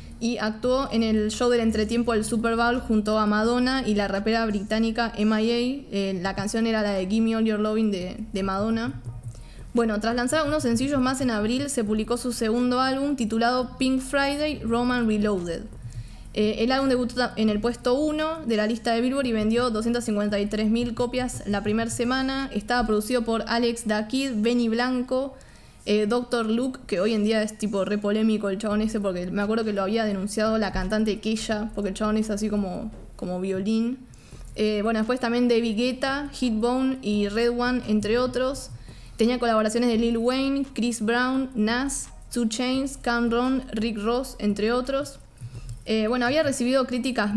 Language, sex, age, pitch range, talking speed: Spanish, female, 20-39, 215-245 Hz, 180 wpm